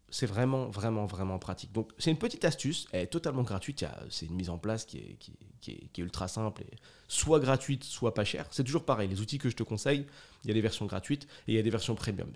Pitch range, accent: 105-135 Hz, French